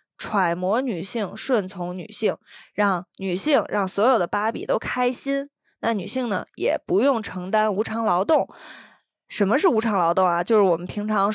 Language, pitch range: Chinese, 200-275 Hz